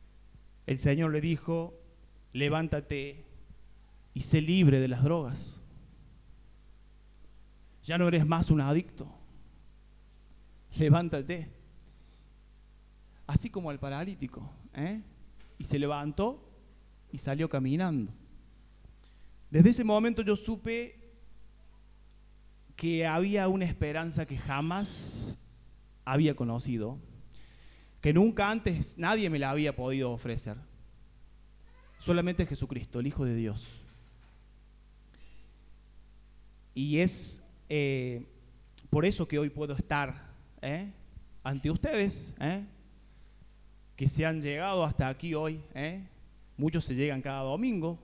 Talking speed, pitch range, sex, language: 100 wpm, 130-165 Hz, male, Spanish